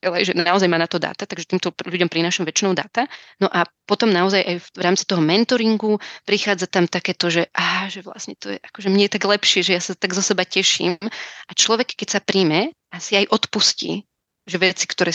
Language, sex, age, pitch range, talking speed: Slovak, female, 30-49, 165-190 Hz, 210 wpm